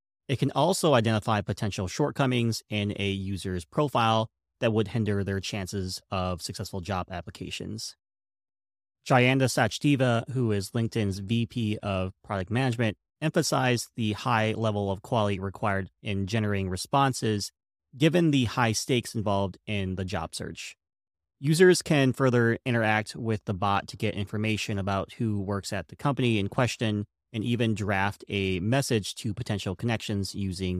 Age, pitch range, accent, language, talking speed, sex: 30-49, 95-120 Hz, American, English, 145 wpm, male